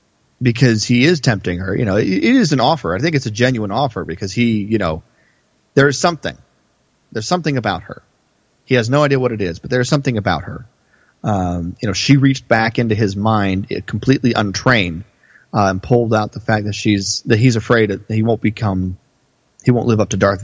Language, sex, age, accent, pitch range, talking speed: English, male, 30-49, American, 100-130 Hz, 215 wpm